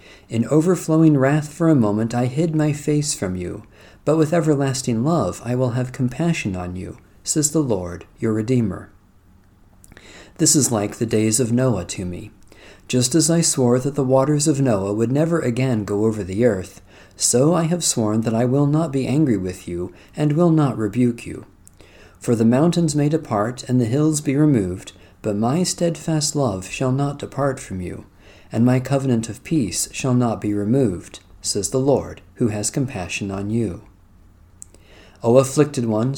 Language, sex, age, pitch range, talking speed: English, male, 50-69, 100-145 Hz, 180 wpm